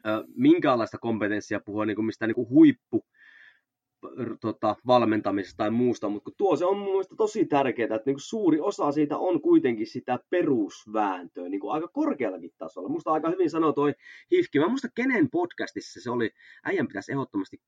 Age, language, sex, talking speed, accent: 30-49, Finnish, male, 155 wpm, native